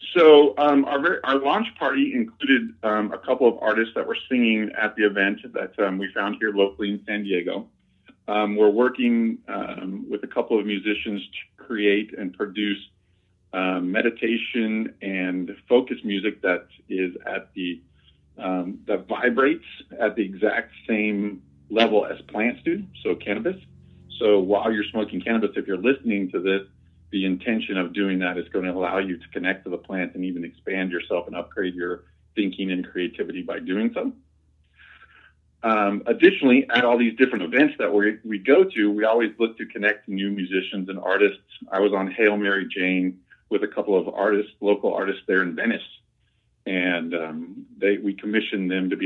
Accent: American